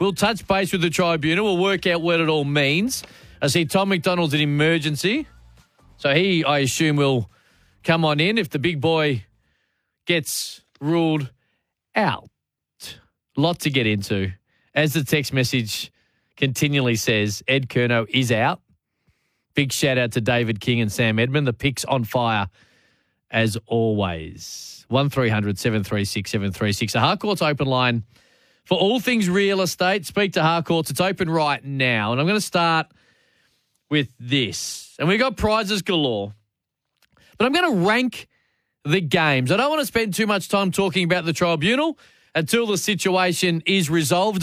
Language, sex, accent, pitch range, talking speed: English, male, Australian, 125-190 Hz, 170 wpm